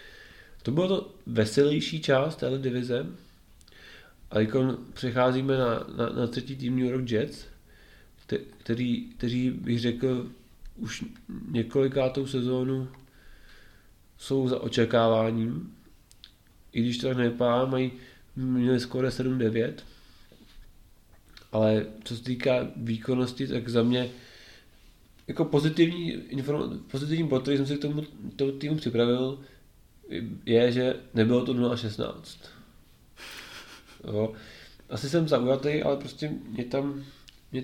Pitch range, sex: 115-135 Hz, male